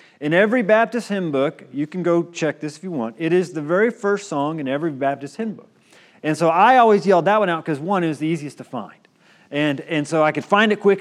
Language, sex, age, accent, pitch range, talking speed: English, male, 30-49, American, 145-190 Hz, 255 wpm